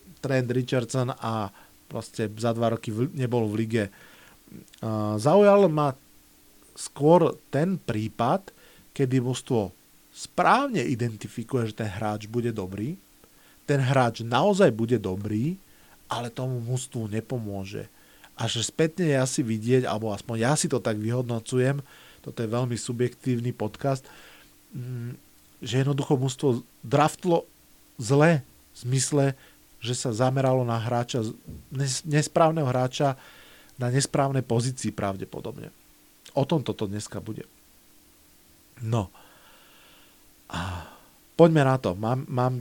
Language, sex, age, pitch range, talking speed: Slovak, male, 40-59, 110-135 Hz, 115 wpm